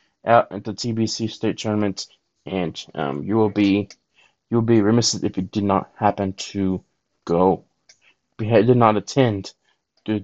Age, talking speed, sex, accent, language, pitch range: 20-39, 150 wpm, male, American, English, 105-135 Hz